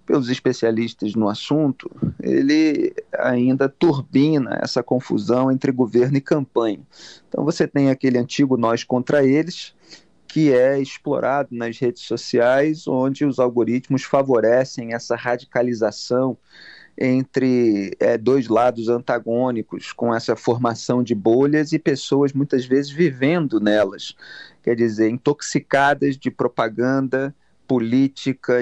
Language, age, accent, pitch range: Portuguese, 40-59, Brazilian, 120-140 Hz